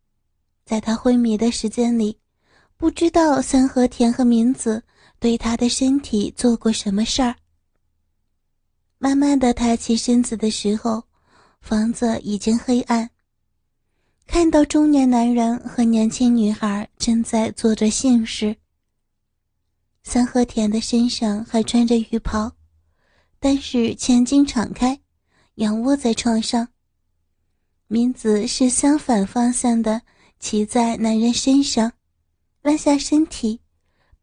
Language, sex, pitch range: Chinese, female, 215-250 Hz